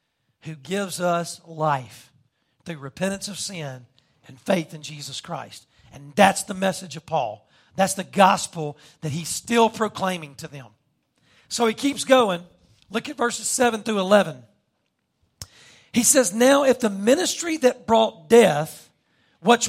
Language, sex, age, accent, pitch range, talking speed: English, male, 40-59, American, 160-240 Hz, 145 wpm